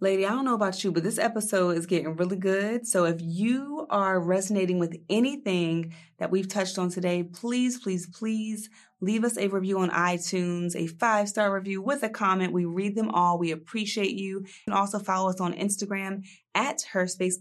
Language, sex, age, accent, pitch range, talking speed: English, female, 30-49, American, 170-205 Hz, 195 wpm